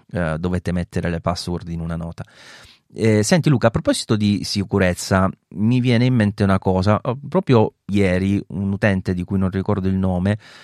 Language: Italian